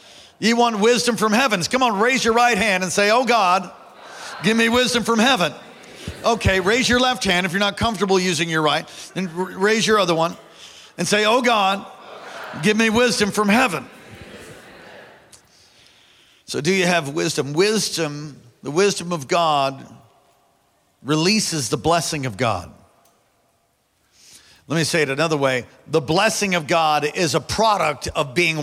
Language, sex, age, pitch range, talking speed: English, male, 50-69, 145-195 Hz, 160 wpm